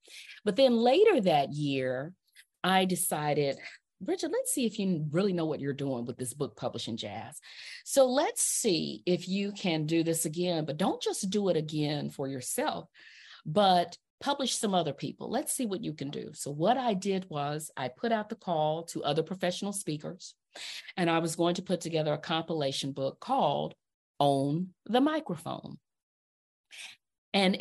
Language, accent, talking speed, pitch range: English, American, 170 wpm, 145-200 Hz